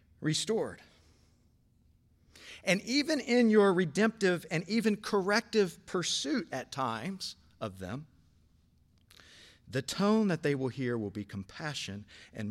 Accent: American